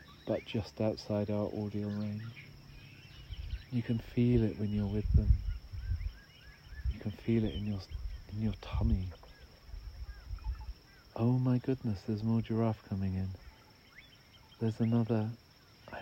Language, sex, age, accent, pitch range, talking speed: English, male, 50-69, British, 90-115 Hz, 125 wpm